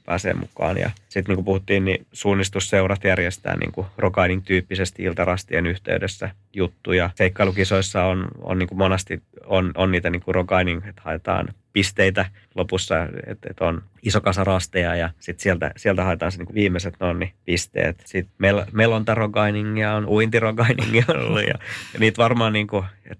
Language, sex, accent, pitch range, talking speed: Finnish, male, native, 95-105 Hz, 150 wpm